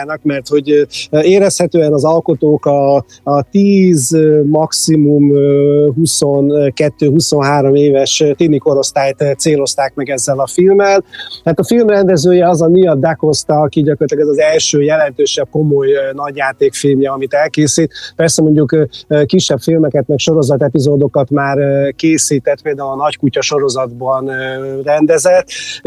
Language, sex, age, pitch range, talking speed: Hungarian, male, 30-49, 140-165 Hz, 115 wpm